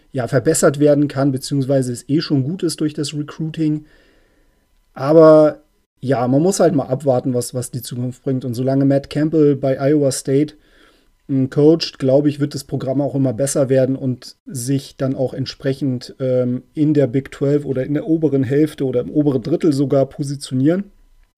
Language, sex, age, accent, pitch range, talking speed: German, male, 40-59, German, 130-150 Hz, 180 wpm